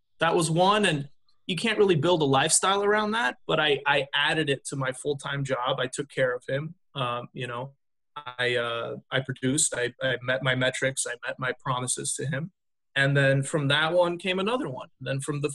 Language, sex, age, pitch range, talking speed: English, male, 20-39, 130-175 Hz, 210 wpm